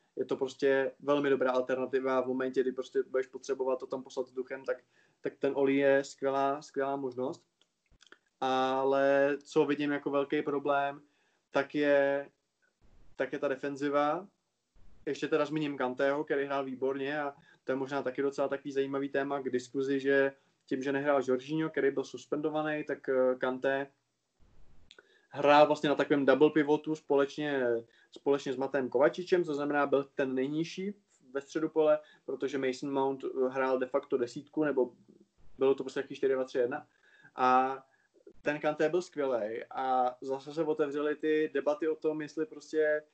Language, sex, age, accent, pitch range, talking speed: Czech, male, 20-39, native, 135-150 Hz, 160 wpm